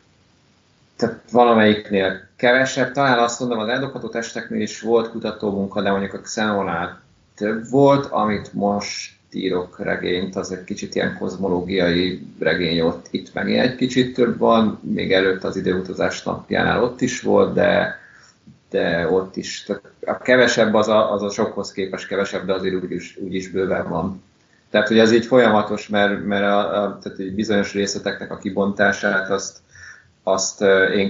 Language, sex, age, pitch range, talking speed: Hungarian, male, 30-49, 95-105 Hz, 155 wpm